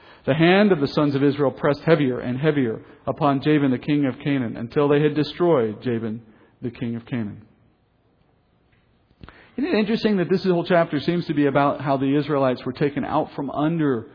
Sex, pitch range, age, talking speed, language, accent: male, 135-165 Hz, 40-59, 190 wpm, English, American